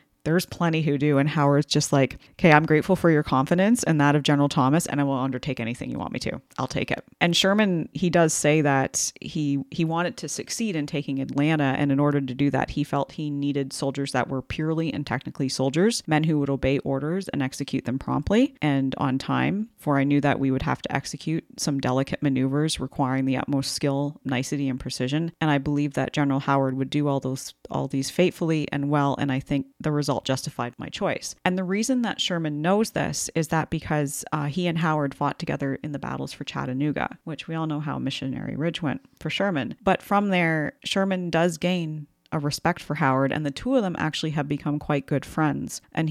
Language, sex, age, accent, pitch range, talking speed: English, female, 30-49, American, 140-165 Hz, 220 wpm